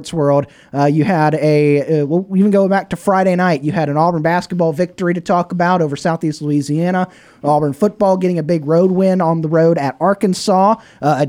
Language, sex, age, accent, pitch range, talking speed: English, male, 30-49, American, 150-195 Hz, 205 wpm